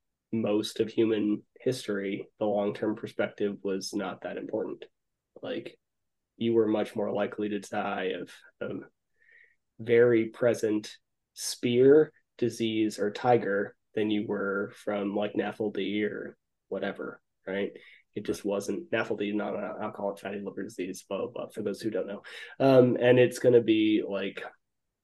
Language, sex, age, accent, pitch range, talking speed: English, male, 20-39, American, 105-125 Hz, 135 wpm